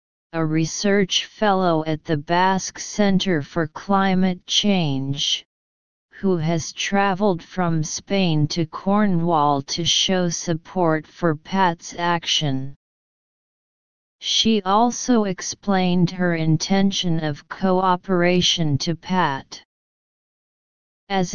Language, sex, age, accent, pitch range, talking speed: English, female, 40-59, American, 160-195 Hz, 95 wpm